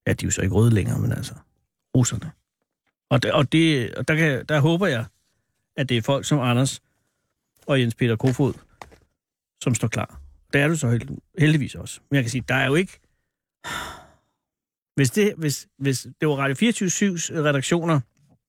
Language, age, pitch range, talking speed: Danish, 60-79, 130-195 Hz, 185 wpm